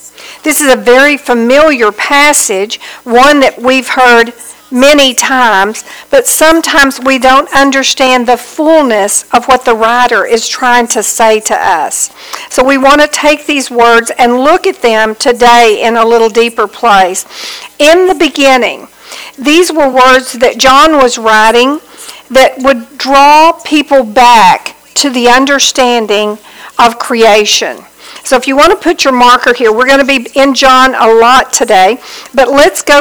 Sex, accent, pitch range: female, American, 225-275 Hz